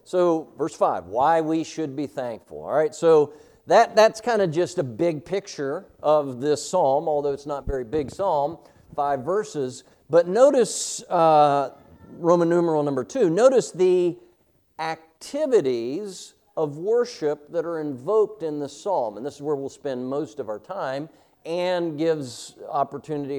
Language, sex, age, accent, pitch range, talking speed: English, male, 50-69, American, 140-175 Hz, 155 wpm